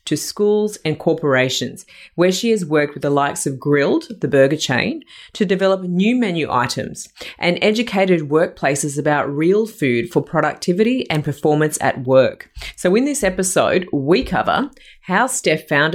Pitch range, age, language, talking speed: 140-195 Hz, 30-49, English, 160 wpm